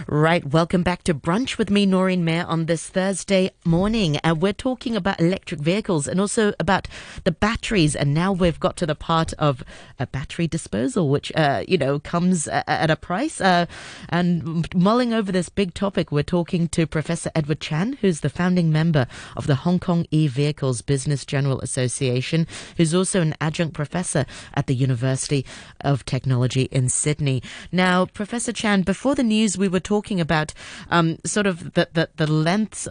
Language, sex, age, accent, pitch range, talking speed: English, female, 30-49, British, 140-185 Hz, 180 wpm